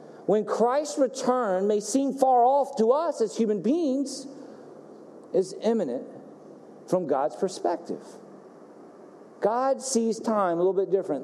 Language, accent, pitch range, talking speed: English, American, 200-260 Hz, 130 wpm